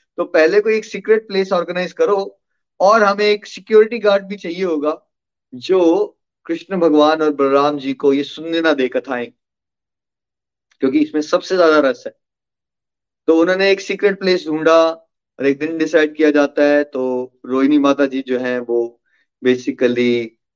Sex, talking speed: male, 145 wpm